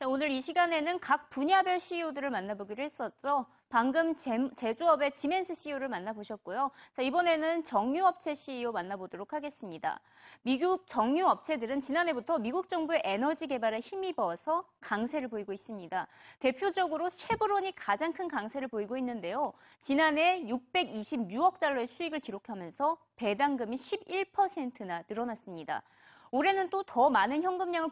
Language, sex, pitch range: Korean, female, 230-340 Hz